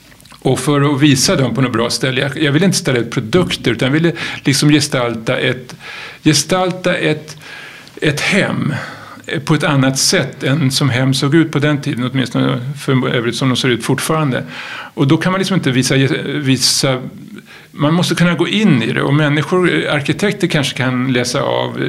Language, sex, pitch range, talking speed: Swedish, male, 125-150 Hz, 185 wpm